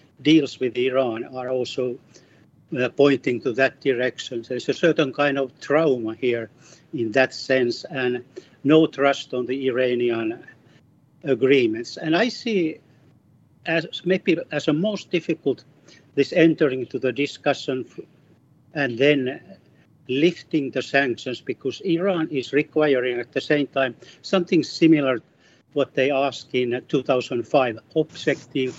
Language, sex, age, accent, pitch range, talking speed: English, male, 60-79, Finnish, 130-160 Hz, 135 wpm